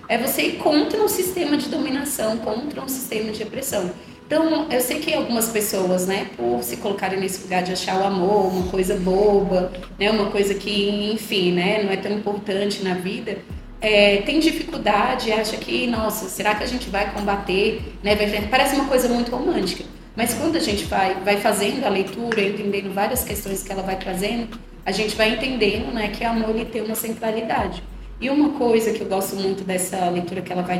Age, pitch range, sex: 20-39, 200-240 Hz, female